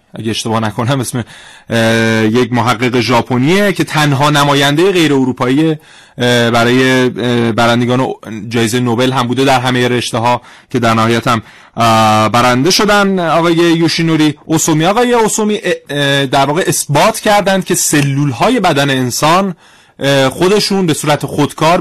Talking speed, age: 140 wpm, 30-49